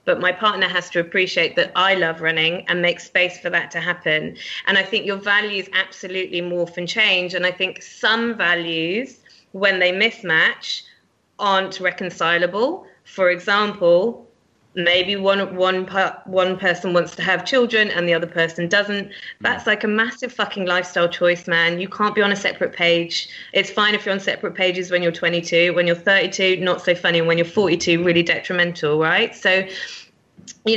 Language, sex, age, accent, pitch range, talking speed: English, female, 20-39, British, 170-200 Hz, 180 wpm